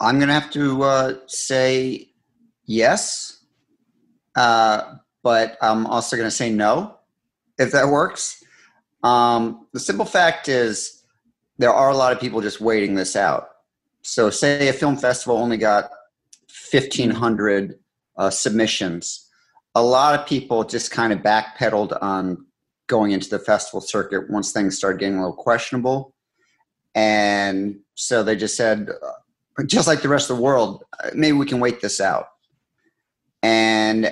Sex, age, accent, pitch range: male, 40-59, American, 105-125 Hz